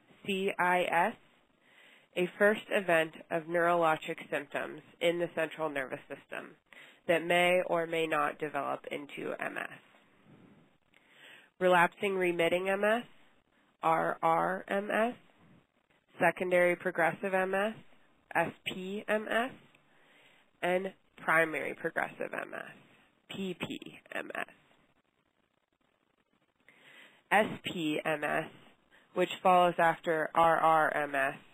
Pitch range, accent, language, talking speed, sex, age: 160-190 Hz, American, English, 70 wpm, female, 20-39